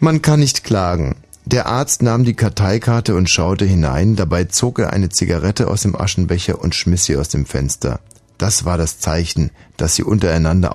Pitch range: 85-110 Hz